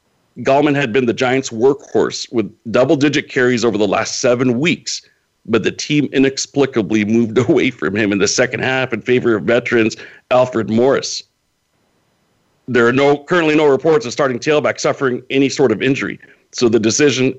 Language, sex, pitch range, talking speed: English, male, 115-135 Hz, 170 wpm